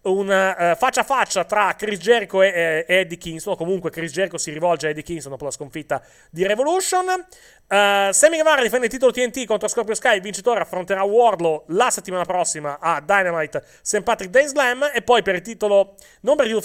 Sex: male